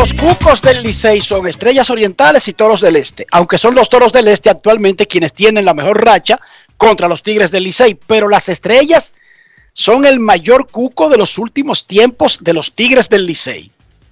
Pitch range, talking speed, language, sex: 185-245 Hz, 185 wpm, Spanish, male